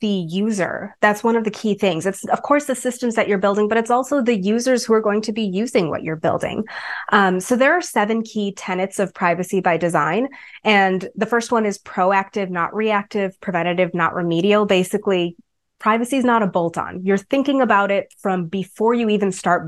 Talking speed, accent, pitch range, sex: 205 wpm, American, 180-230 Hz, female